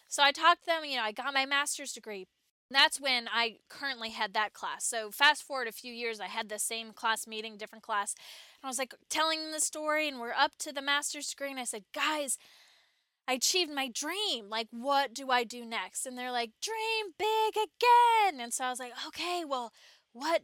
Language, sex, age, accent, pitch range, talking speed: English, female, 20-39, American, 225-300 Hz, 225 wpm